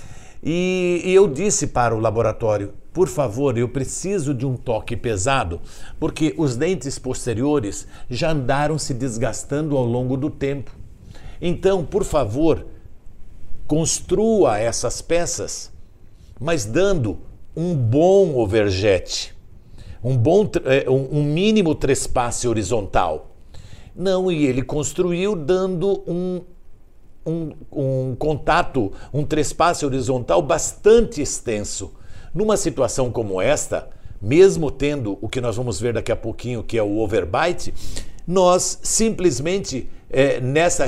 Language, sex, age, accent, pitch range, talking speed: Portuguese, male, 60-79, Brazilian, 115-170 Hz, 115 wpm